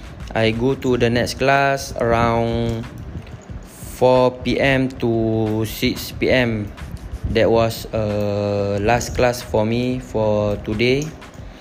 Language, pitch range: English, 105-125 Hz